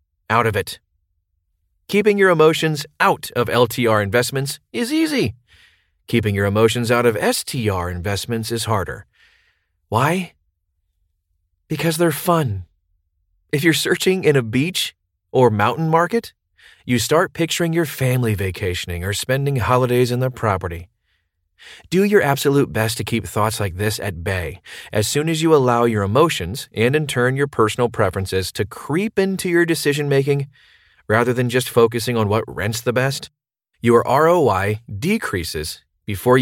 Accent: American